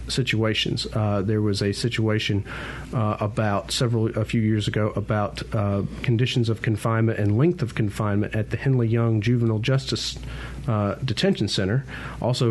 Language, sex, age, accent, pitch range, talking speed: English, male, 40-59, American, 105-130 Hz, 155 wpm